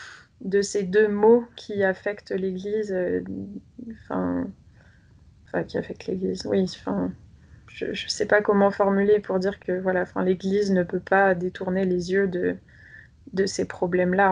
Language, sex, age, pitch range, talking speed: French, female, 20-39, 180-205 Hz, 140 wpm